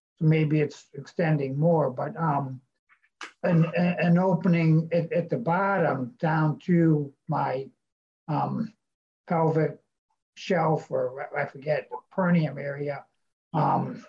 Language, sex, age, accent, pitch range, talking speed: English, male, 60-79, American, 145-170 Hz, 110 wpm